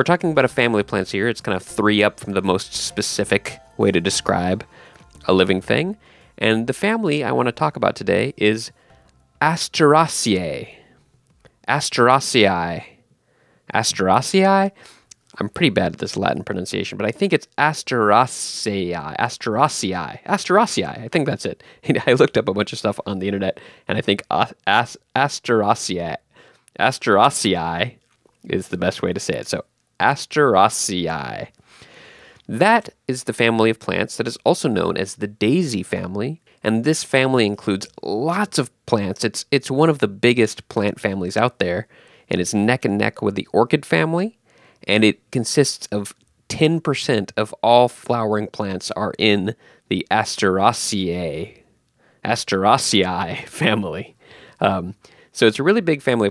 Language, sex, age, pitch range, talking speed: English, male, 20-39, 100-135 Hz, 150 wpm